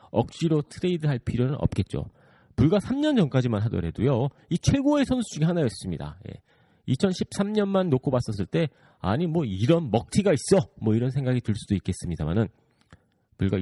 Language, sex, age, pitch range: Korean, male, 40-59, 95-145 Hz